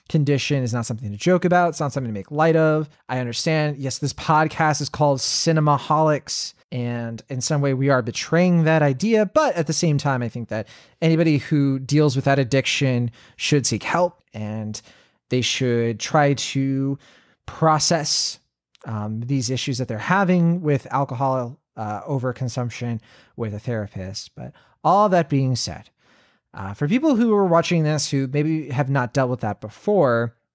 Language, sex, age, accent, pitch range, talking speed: English, male, 30-49, American, 120-155 Hz, 170 wpm